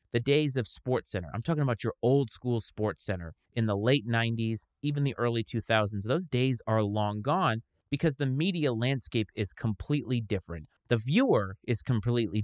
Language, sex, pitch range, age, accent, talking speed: English, male, 105-130 Hz, 30-49, American, 170 wpm